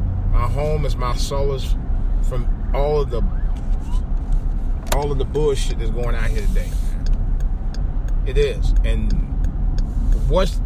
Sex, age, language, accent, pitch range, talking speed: male, 30-49, English, American, 80-120 Hz, 125 wpm